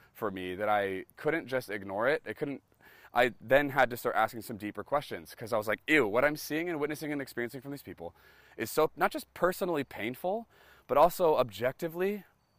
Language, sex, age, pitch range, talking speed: English, male, 20-39, 110-155 Hz, 205 wpm